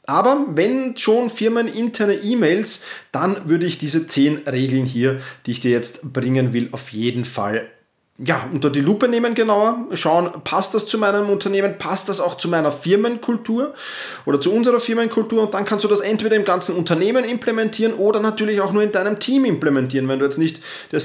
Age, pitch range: 30-49, 160-220 Hz